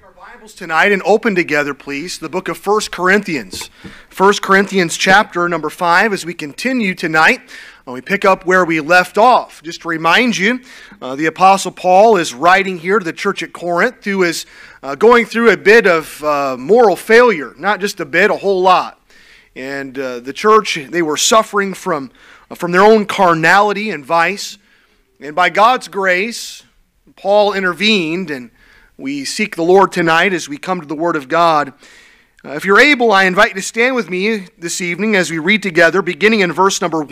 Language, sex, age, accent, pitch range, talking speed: English, male, 40-59, American, 175-215 Hz, 190 wpm